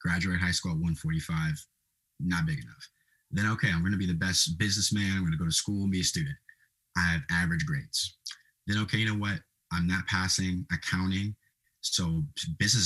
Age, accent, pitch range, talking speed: 30-49, American, 90-120 Hz, 195 wpm